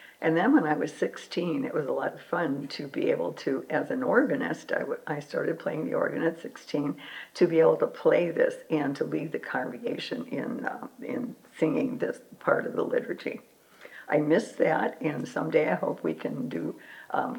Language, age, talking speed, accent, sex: English, 60-79, 205 wpm, American, female